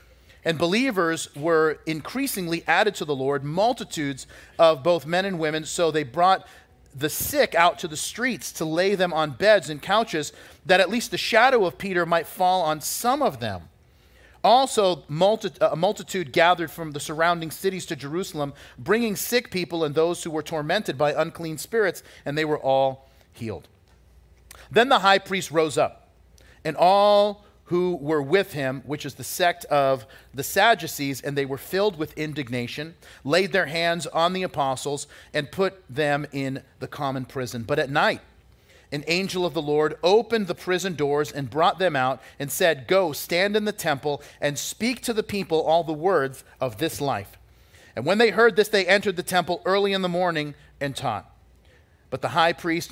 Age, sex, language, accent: 40-59, male, English, American